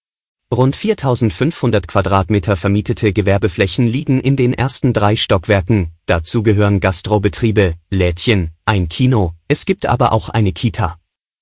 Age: 30-49